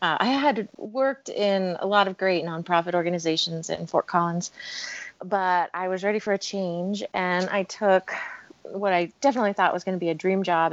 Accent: American